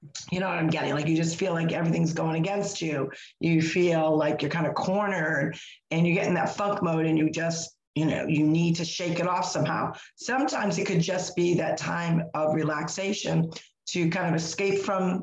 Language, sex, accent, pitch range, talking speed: English, female, American, 160-185 Hz, 215 wpm